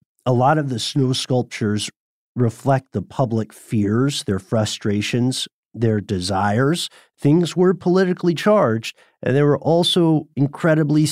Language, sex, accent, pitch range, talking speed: English, male, American, 115-155 Hz, 125 wpm